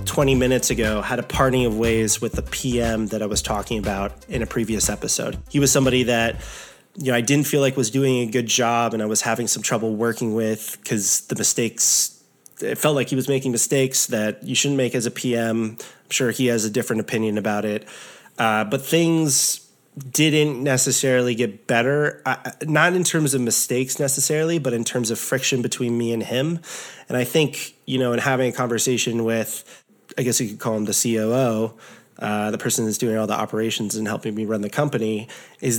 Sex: male